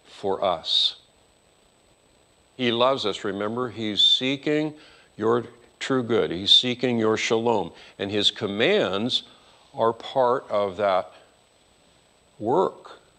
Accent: American